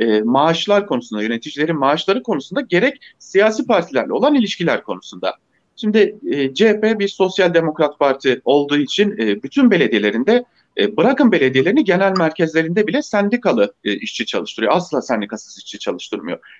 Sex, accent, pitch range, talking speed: male, Turkish, 170-245 Hz, 135 wpm